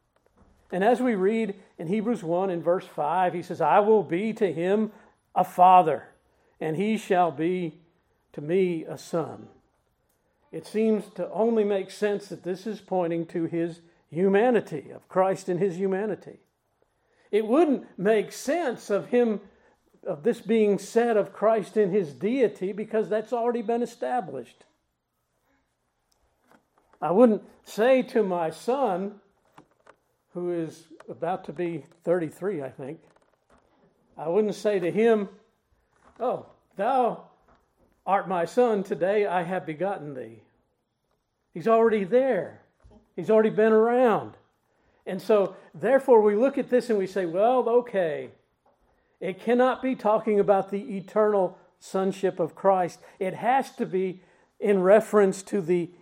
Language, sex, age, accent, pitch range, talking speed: English, male, 50-69, American, 180-220 Hz, 140 wpm